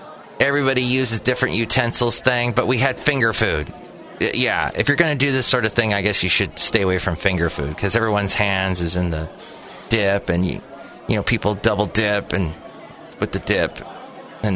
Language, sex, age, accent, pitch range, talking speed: English, male, 30-49, American, 100-135 Hz, 200 wpm